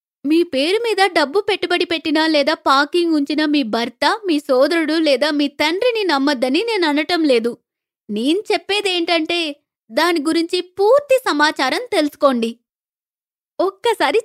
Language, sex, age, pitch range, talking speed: Telugu, female, 20-39, 285-380 Hz, 115 wpm